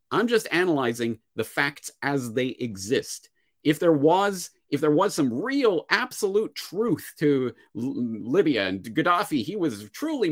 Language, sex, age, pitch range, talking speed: English, male, 40-59, 115-170 Hz, 150 wpm